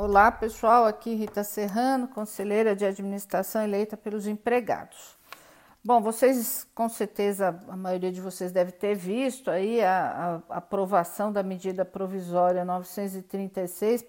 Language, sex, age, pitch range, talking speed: Portuguese, female, 50-69, 195-240 Hz, 130 wpm